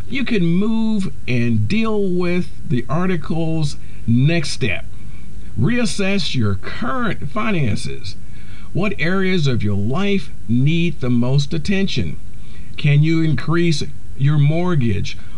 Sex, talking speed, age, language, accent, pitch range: male, 110 wpm, 50-69, English, American, 115-190 Hz